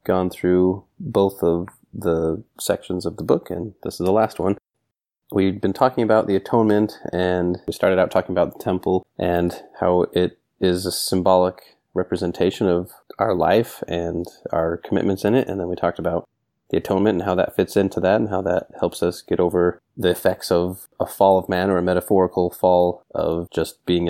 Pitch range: 90-100 Hz